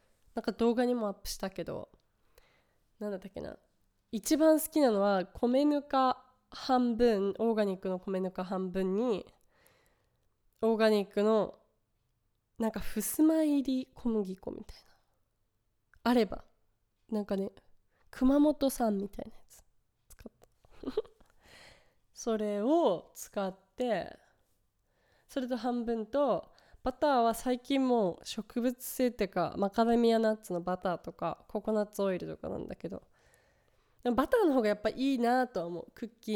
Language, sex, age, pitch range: Japanese, female, 20-39, 200-260 Hz